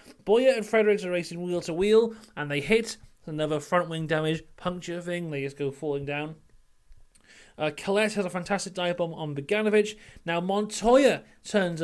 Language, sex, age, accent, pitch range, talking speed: English, male, 30-49, British, 155-215 Hz, 170 wpm